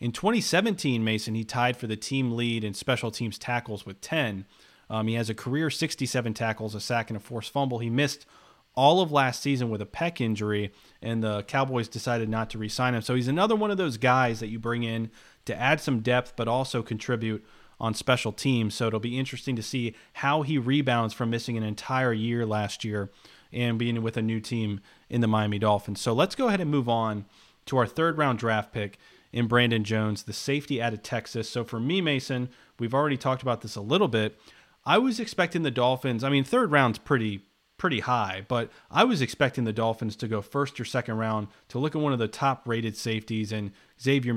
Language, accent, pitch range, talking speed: English, American, 110-135 Hz, 215 wpm